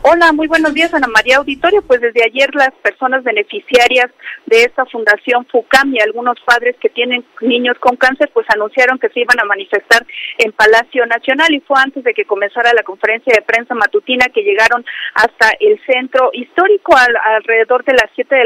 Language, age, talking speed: English, 40-59, 185 wpm